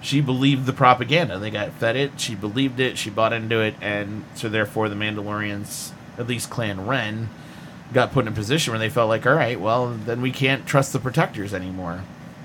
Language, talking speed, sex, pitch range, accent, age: English, 205 wpm, male, 110-140 Hz, American, 30-49